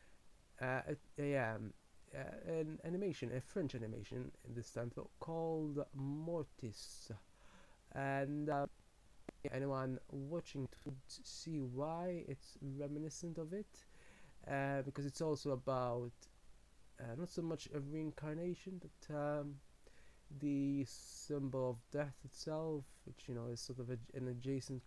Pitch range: 125-150 Hz